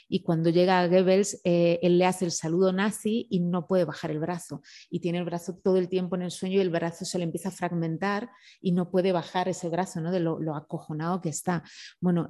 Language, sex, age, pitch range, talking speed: Spanish, female, 30-49, 175-195 Hz, 240 wpm